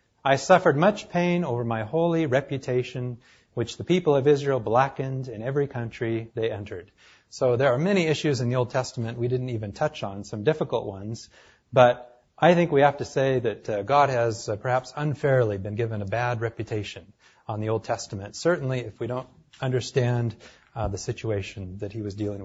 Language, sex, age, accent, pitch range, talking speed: English, male, 30-49, American, 110-135 Hz, 190 wpm